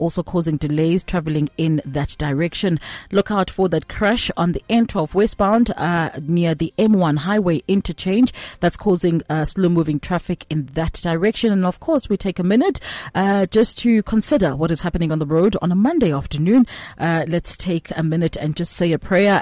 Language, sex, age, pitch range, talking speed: English, female, 30-49, 155-195 Hz, 190 wpm